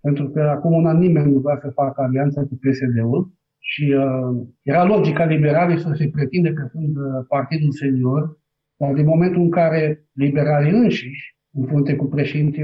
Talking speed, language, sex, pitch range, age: 170 wpm, Romanian, male, 140-175 Hz, 50-69